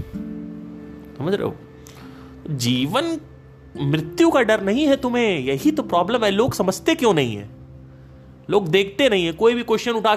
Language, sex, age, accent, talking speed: Hindi, male, 30-49, native, 160 wpm